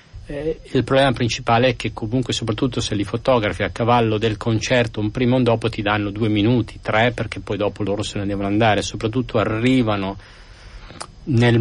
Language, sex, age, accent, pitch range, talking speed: Italian, male, 50-69, native, 105-125 Hz, 180 wpm